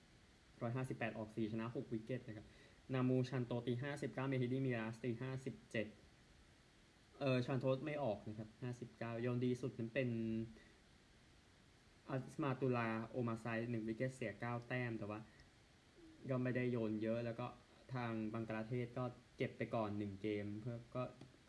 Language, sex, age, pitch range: Thai, male, 20-39, 110-130 Hz